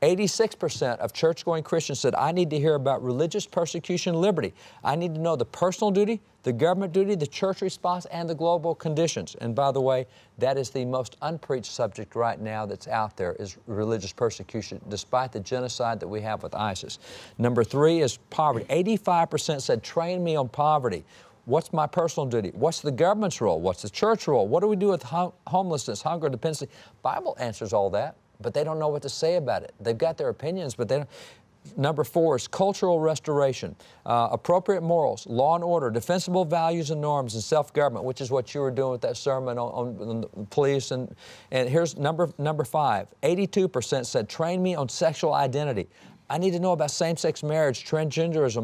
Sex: male